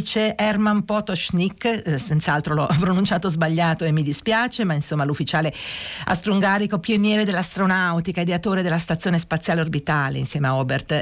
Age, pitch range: 50-69, 150-185 Hz